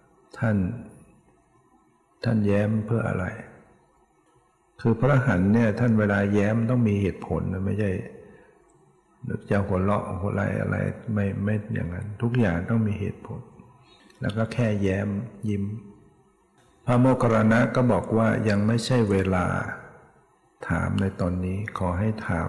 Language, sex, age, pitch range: Thai, male, 60-79, 100-115 Hz